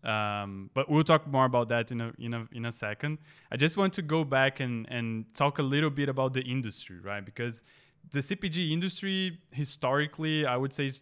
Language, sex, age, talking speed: English, male, 20-39, 190 wpm